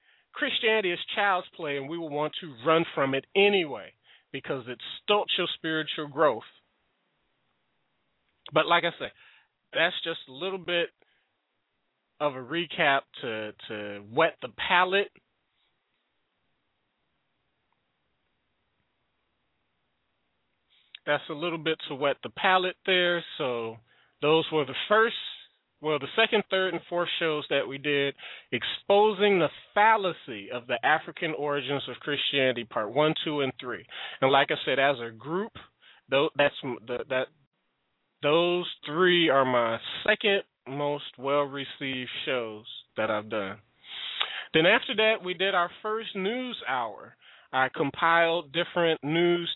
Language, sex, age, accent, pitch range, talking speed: English, male, 30-49, American, 140-185 Hz, 125 wpm